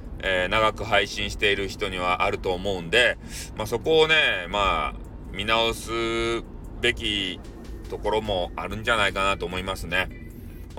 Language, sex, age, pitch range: Japanese, male, 40-59, 90-125 Hz